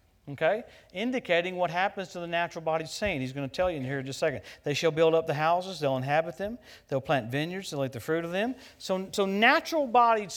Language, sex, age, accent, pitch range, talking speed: English, male, 50-69, American, 155-200 Hz, 230 wpm